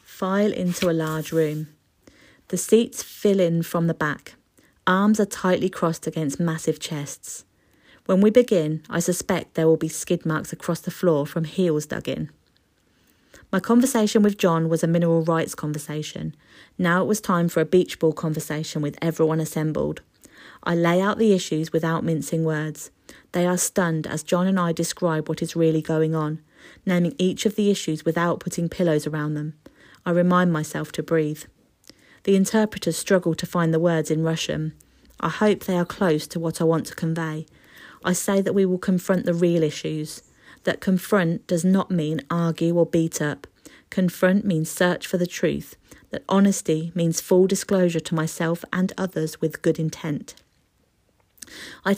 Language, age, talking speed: English, 30-49, 175 wpm